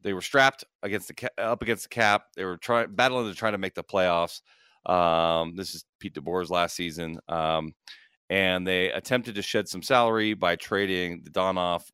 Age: 40-59